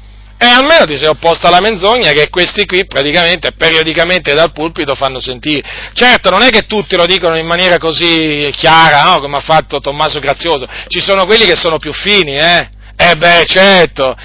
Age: 40-59